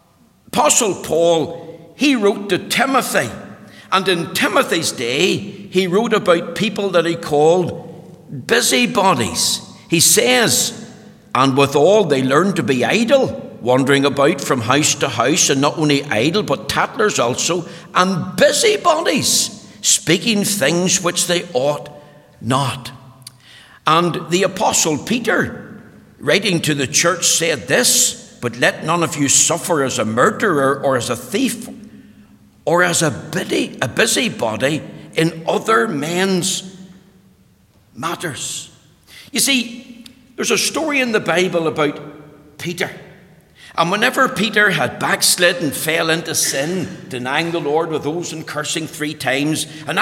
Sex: male